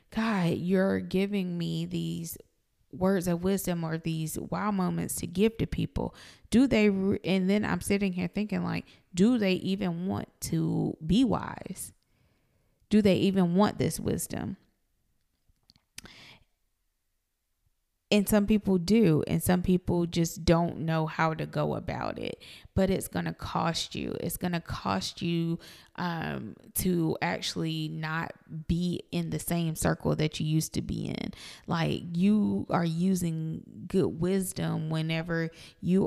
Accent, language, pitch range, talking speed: American, English, 155-185 Hz, 145 wpm